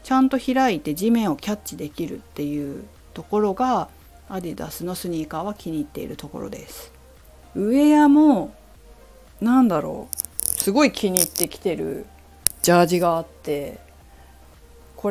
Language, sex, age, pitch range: Japanese, female, 40-59, 150-245 Hz